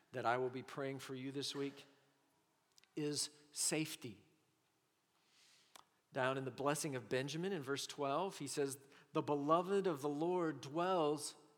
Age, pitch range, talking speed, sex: 50-69, 135-170 Hz, 145 wpm, male